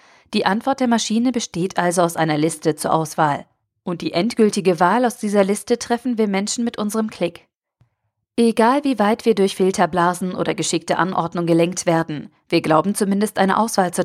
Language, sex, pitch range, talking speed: German, female, 165-200 Hz, 175 wpm